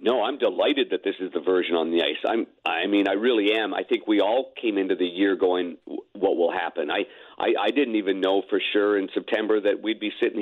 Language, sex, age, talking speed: English, male, 50-69, 250 wpm